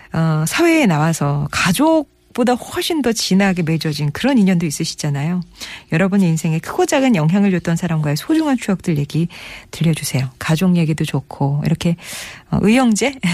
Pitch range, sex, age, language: 155-215 Hz, female, 40-59, Korean